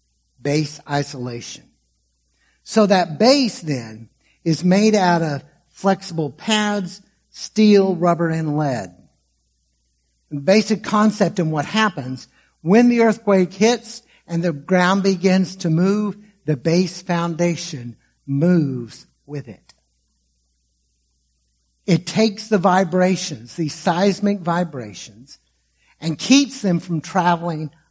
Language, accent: English, American